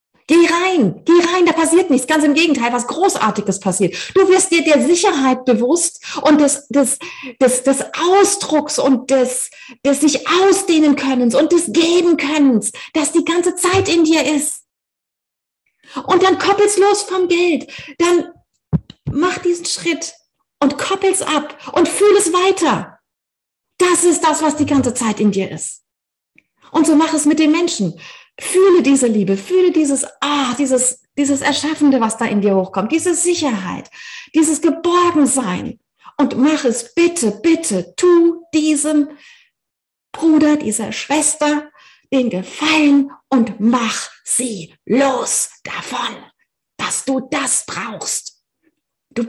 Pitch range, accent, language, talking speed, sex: 260-340 Hz, German, German, 140 wpm, female